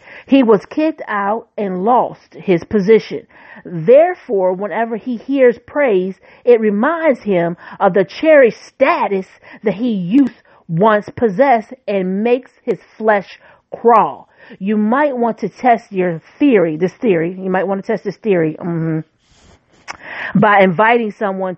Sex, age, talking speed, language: female, 40-59, 140 wpm, English